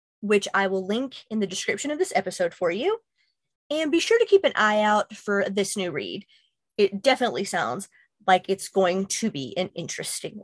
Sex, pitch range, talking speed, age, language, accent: female, 195-265 Hz, 195 wpm, 30-49, English, American